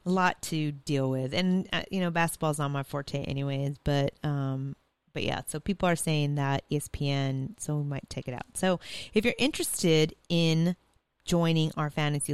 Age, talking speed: 30-49, 190 wpm